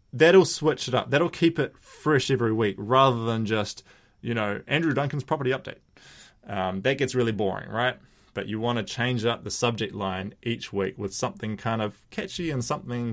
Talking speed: 195 wpm